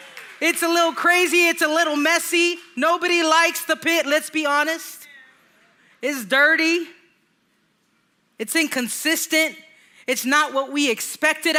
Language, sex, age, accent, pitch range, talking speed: English, female, 30-49, American, 225-305 Hz, 125 wpm